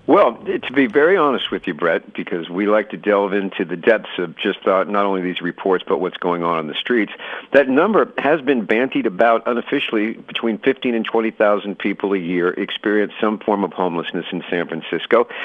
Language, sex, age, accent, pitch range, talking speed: English, male, 50-69, American, 100-140 Hz, 205 wpm